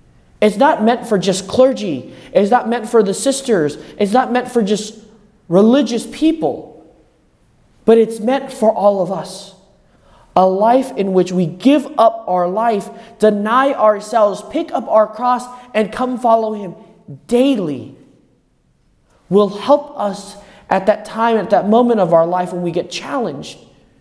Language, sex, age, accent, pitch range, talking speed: English, male, 20-39, American, 170-225 Hz, 155 wpm